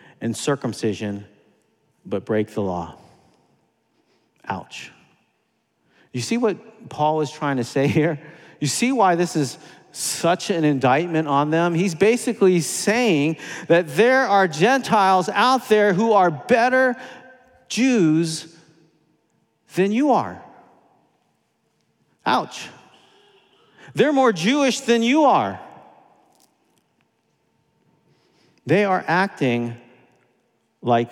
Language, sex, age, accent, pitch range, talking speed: English, male, 50-69, American, 135-185 Hz, 100 wpm